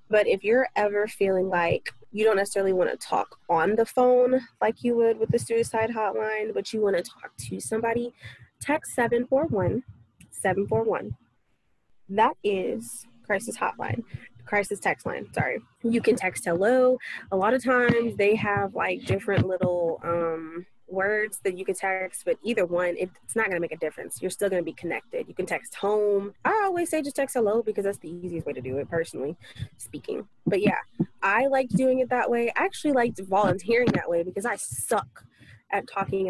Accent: American